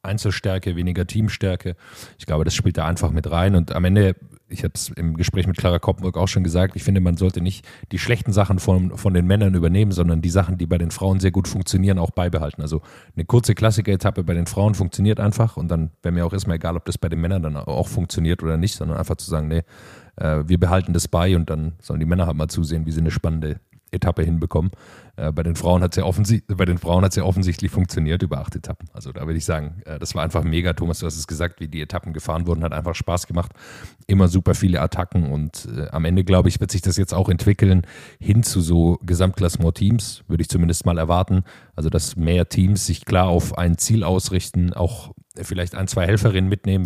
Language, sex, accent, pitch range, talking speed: German, male, German, 85-95 Hz, 230 wpm